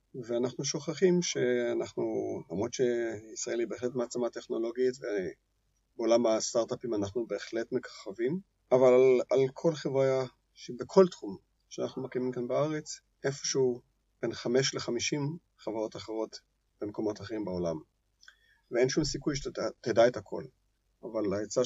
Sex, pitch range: male, 120-150 Hz